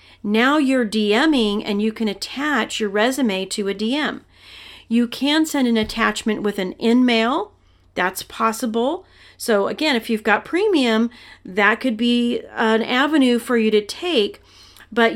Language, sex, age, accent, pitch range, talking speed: English, female, 40-59, American, 205-260 Hz, 150 wpm